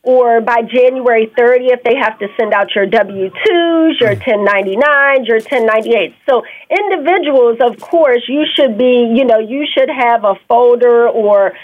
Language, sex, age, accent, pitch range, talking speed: English, female, 40-59, American, 225-275 Hz, 160 wpm